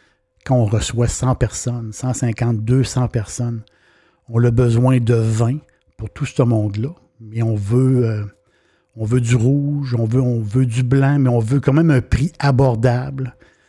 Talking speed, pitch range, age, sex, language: 170 wpm, 105-130 Hz, 60-79, male, French